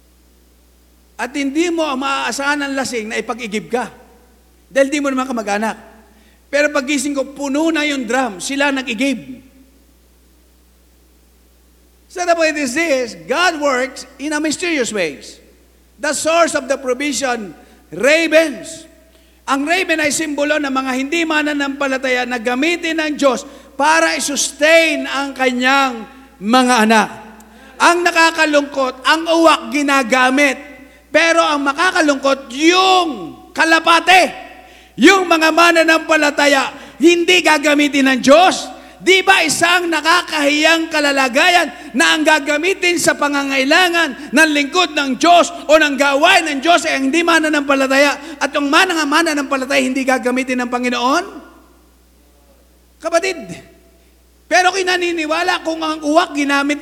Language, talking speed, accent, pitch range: English, 125 wpm, Filipino, 265-325 Hz